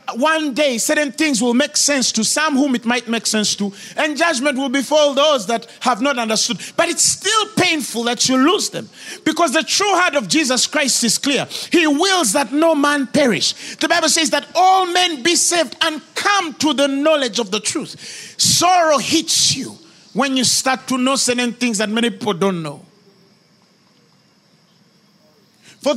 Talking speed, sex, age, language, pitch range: 185 wpm, male, 40-59, English, 225-330 Hz